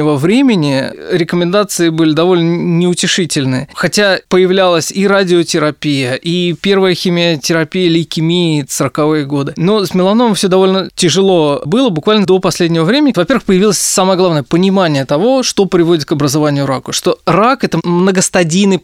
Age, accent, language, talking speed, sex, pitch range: 20-39, native, Russian, 135 wpm, male, 160-205 Hz